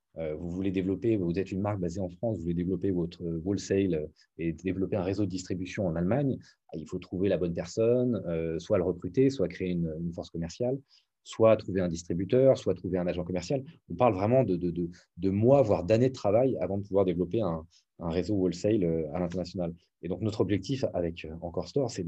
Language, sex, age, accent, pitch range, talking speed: French, male, 30-49, French, 85-110 Hz, 205 wpm